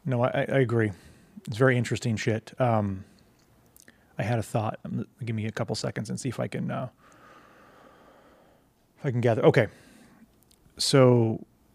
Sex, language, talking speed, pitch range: male, English, 155 wpm, 105-125 Hz